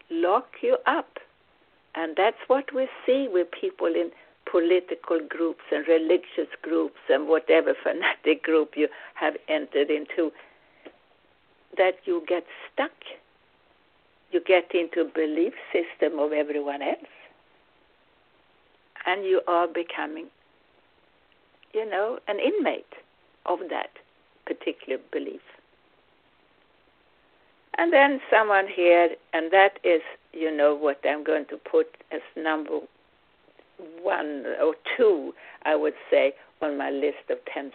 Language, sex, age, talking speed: English, female, 60-79, 120 wpm